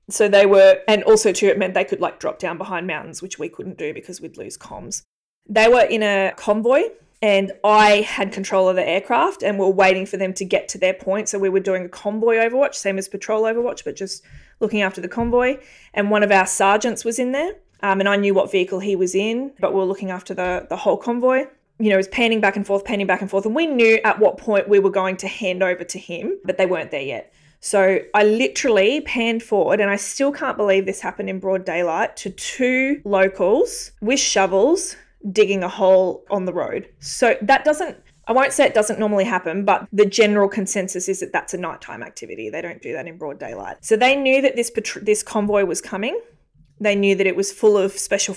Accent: Australian